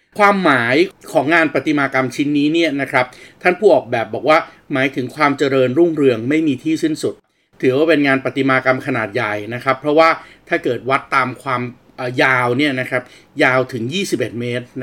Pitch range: 125-155 Hz